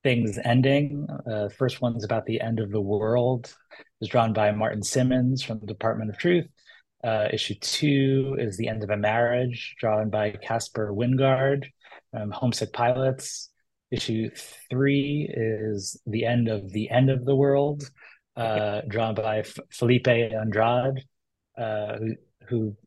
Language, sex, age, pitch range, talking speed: English, male, 30-49, 110-130 Hz, 150 wpm